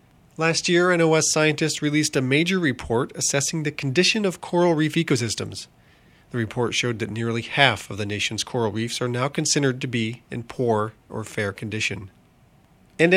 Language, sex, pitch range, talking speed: English, male, 115-160 Hz, 170 wpm